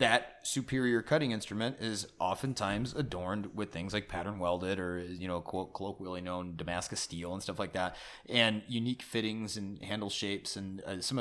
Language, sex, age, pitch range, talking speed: English, male, 30-49, 100-120 Hz, 175 wpm